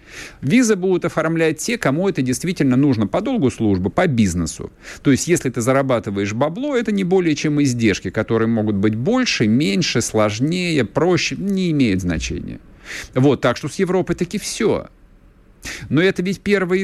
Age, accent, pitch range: 50-69, native, 120-165 Hz